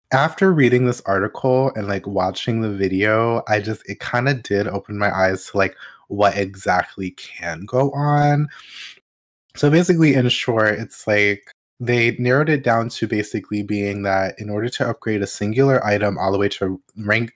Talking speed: 175 wpm